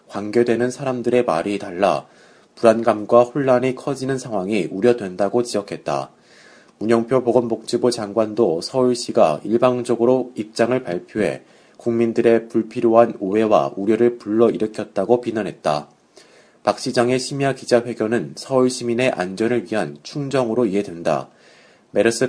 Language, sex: Korean, male